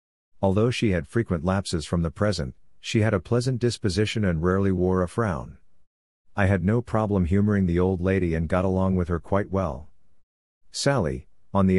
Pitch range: 85-105 Hz